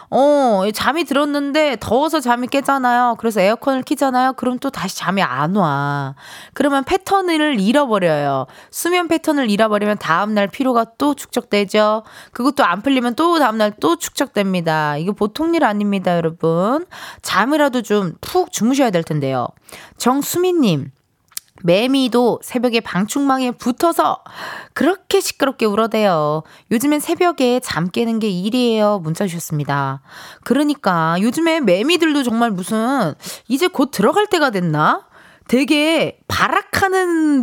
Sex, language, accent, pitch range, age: female, Korean, native, 195-295 Hz, 20-39